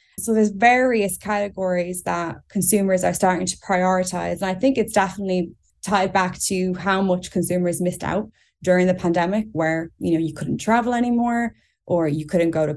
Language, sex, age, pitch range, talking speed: English, female, 20-39, 175-195 Hz, 180 wpm